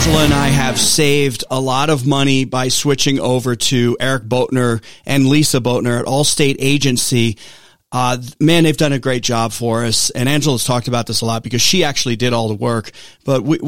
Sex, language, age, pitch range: male, English, 40-59, 115-140 Hz